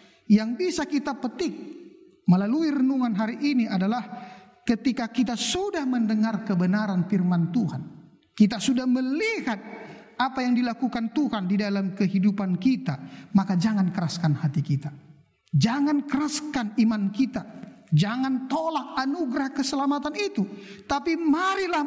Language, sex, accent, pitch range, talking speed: Indonesian, male, native, 195-290 Hz, 120 wpm